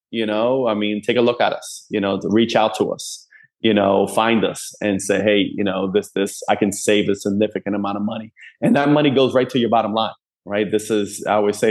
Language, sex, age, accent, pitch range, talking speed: English, male, 30-49, American, 100-115 Hz, 255 wpm